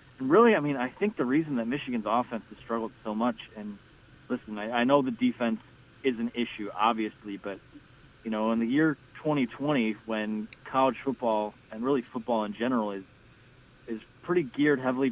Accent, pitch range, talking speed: American, 115-135 Hz, 180 wpm